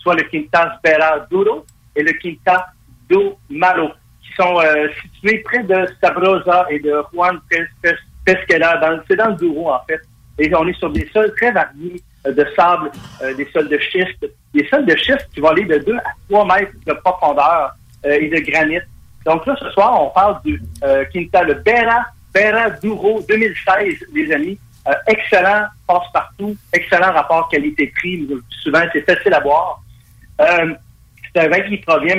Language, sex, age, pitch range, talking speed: French, male, 50-69, 150-205 Hz, 185 wpm